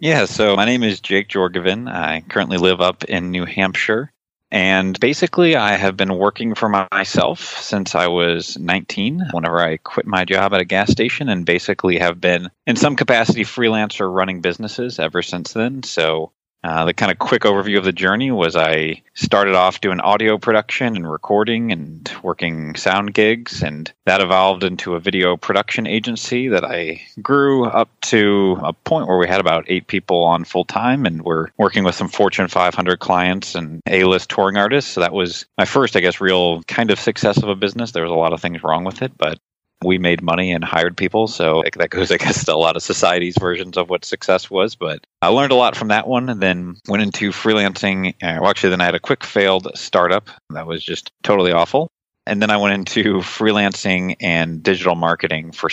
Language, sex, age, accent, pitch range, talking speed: English, male, 30-49, American, 85-105 Hz, 200 wpm